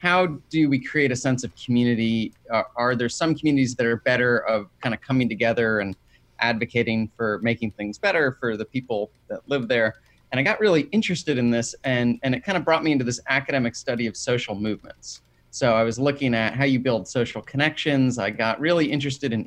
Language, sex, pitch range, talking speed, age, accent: English, male, 115-135 Hz, 215 wpm, 30-49, American